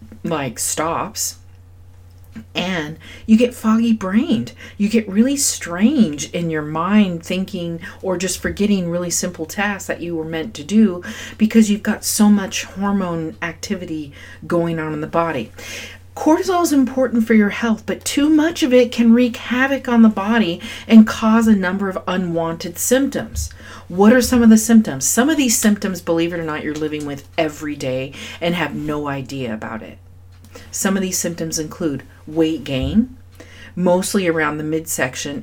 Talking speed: 170 wpm